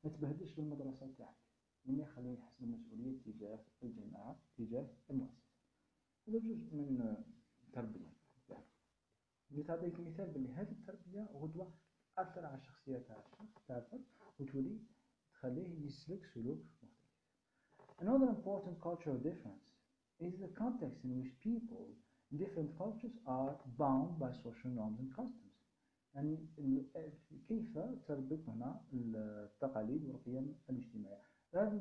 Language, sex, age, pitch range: Arabic, male, 50-69, 135-200 Hz